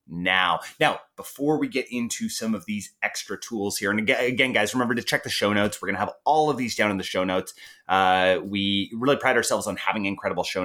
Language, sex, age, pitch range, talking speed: English, male, 30-49, 95-130 Hz, 235 wpm